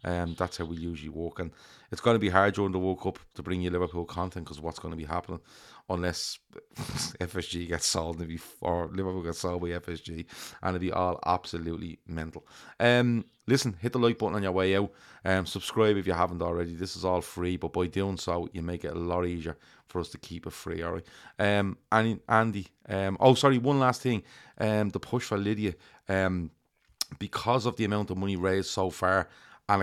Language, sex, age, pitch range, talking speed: English, male, 30-49, 85-100 Hz, 215 wpm